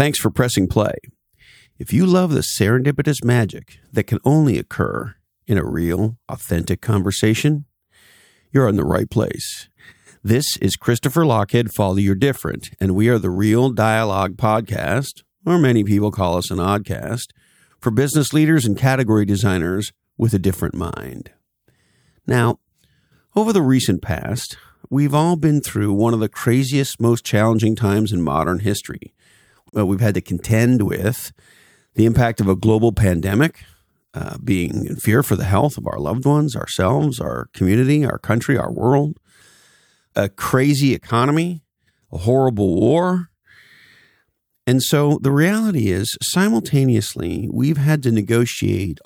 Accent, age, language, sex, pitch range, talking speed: American, 50-69, English, male, 100-140 Hz, 145 wpm